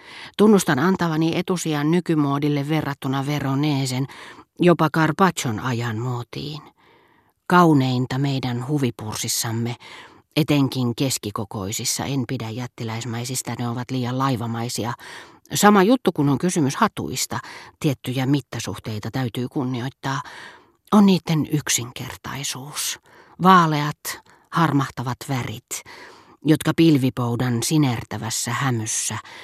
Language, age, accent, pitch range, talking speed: Finnish, 40-59, native, 120-150 Hz, 85 wpm